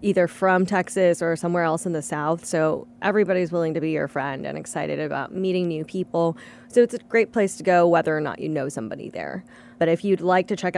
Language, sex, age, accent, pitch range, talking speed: English, female, 10-29, American, 160-185 Hz, 235 wpm